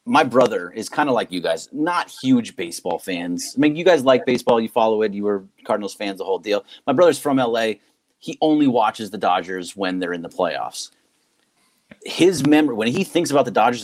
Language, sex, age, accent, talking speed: English, male, 30-49, American, 215 wpm